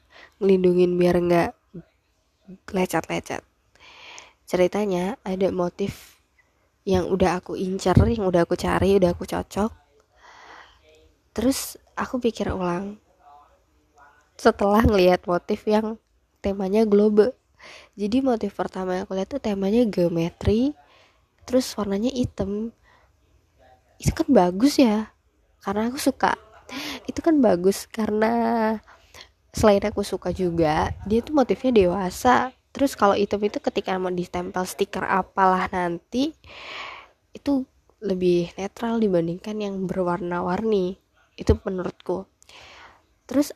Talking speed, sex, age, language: 105 wpm, female, 20-39, Indonesian